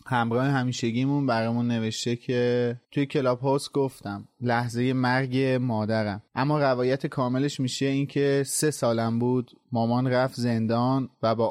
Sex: male